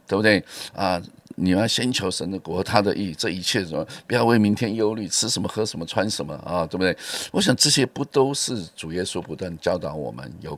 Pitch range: 80-110 Hz